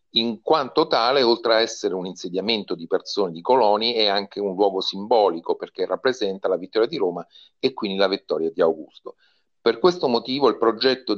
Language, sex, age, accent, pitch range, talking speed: Italian, male, 40-59, native, 95-130 Hz, 185 wpm